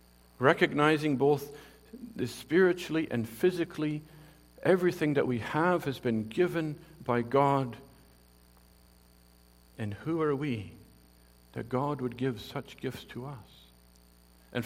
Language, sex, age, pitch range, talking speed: English, male, 50-69, 105-140 Hz, 110 wpm